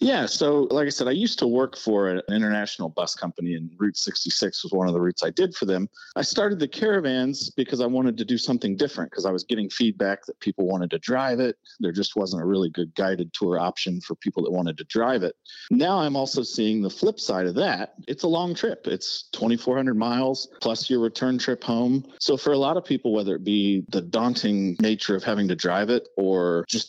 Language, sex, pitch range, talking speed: English, male, 100-140 Hz, 230 wpm